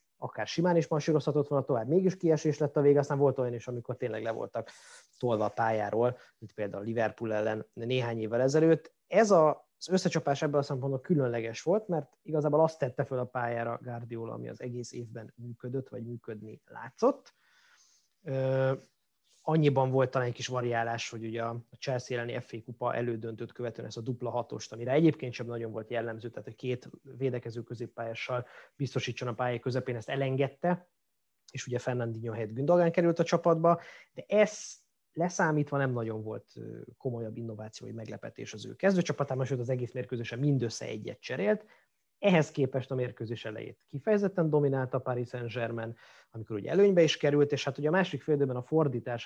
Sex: male